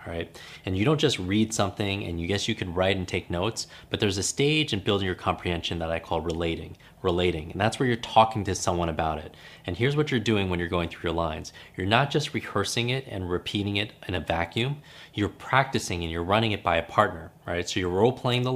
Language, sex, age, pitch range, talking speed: English, male, 30-49, 85-110 Hz, 240 wpm